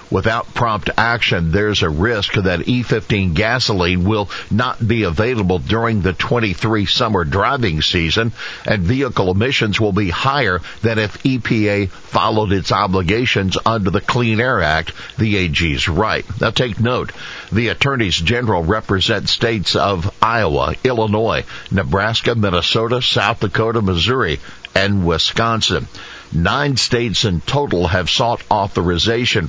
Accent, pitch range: American, 95-115 Hz